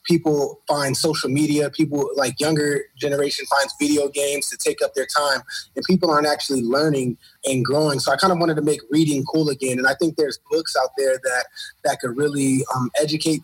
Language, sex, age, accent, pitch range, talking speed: English, male, 20-39, American, 135-165 Hz, 205 wpm